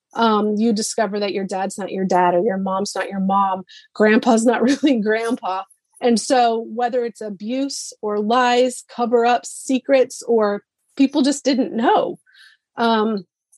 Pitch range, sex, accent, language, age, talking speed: 205-245 Hz, female, American, English, 30-49, 155 wpm